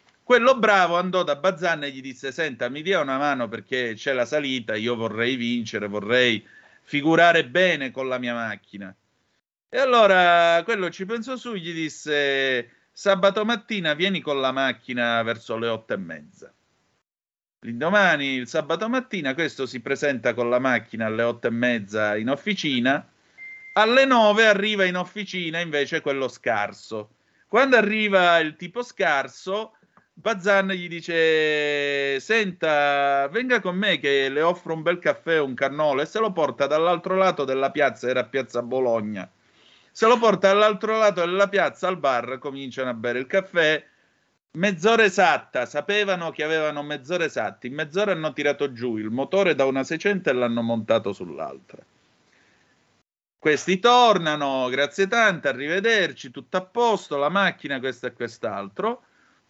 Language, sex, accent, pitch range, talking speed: Italian, male, native, 130-195 Hz, 150 wpm